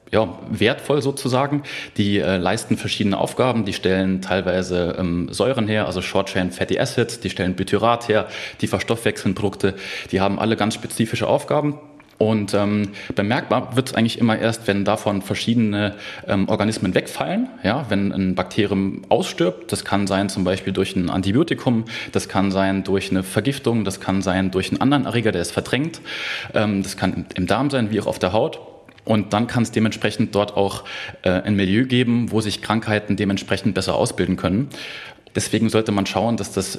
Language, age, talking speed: German, 30-49, 175 wpm